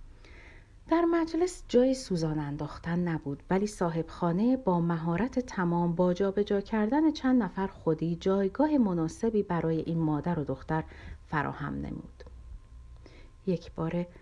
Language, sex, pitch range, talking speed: Persian, female, 155-195 Hz, 120 wpm